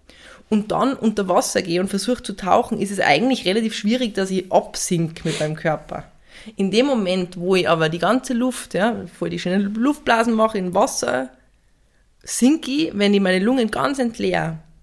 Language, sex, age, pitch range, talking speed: German, female, 20-39, 175-210 Hz, 180 wpm